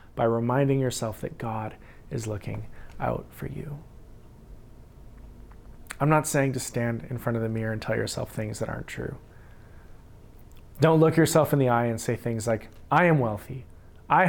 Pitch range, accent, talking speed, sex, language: 100-145 Hz, American, 170 wpm, male, English